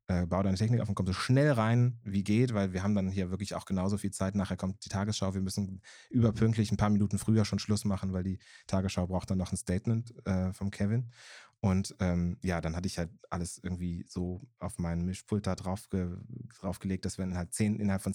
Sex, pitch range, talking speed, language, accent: male, 90-110 Hz, 230 wpm, German, German